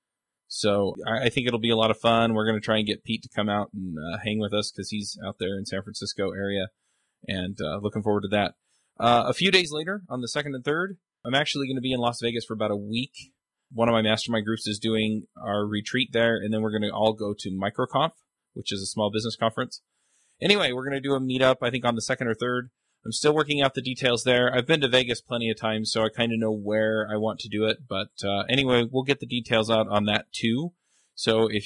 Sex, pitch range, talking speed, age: male, 105-125 Hz, 260 wpm, 20-39